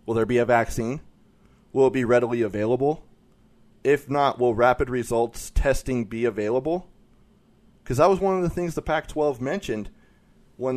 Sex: male